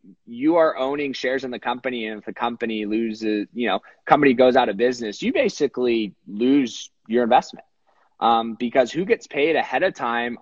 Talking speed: 185 wpm